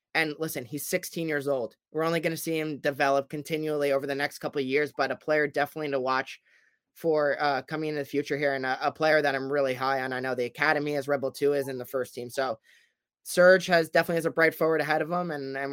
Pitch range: 140-165 Hz